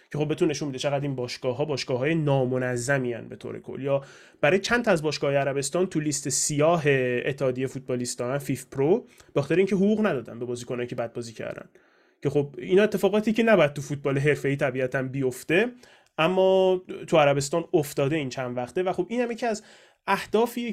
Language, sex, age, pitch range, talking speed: Persian, male, 30-49, 130-185 Hz, 195 wpm